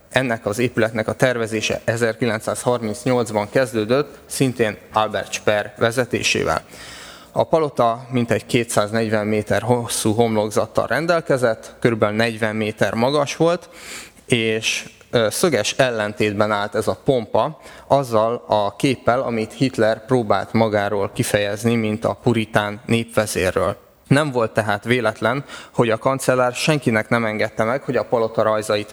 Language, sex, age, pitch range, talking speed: Hungarian, male, 20-39, 110-130 Hz, 120 wpm